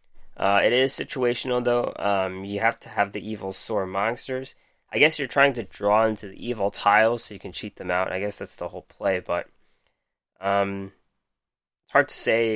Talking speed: 200 wpm